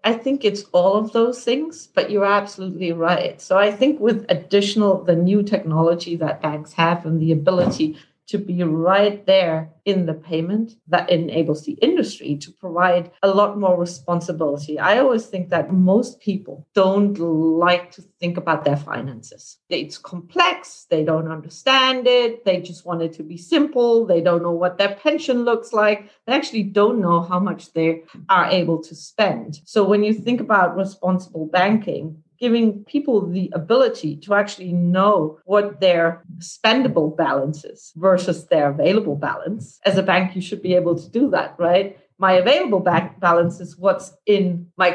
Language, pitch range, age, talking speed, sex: English, 170-205 Hz, 40-59, 170 wpm, female